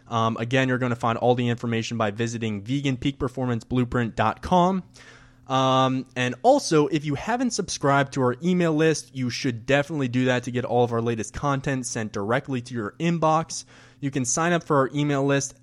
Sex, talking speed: male, 180 wpm